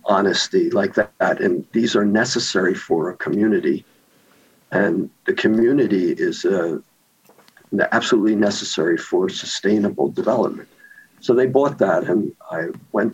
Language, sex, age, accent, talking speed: English, male, 60-79, American, 125 wpm